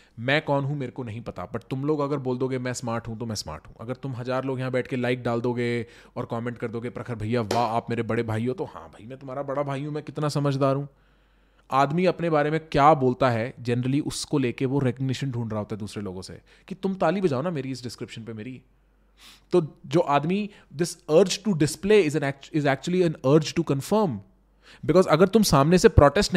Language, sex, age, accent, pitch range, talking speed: English, male, 20-39, Indian, 125-180 Hz, 130 wpm